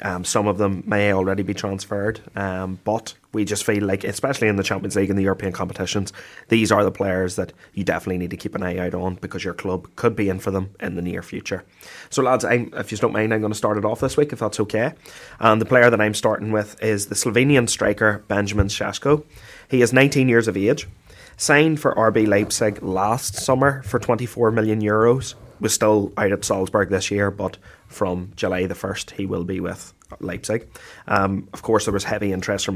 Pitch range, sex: 95-120 Hz, male